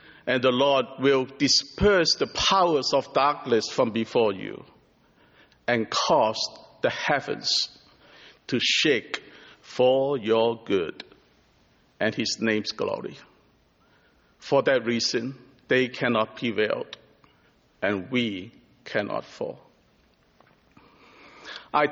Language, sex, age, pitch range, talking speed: English, male, 50-69, 120-145 Hz, 100 wpm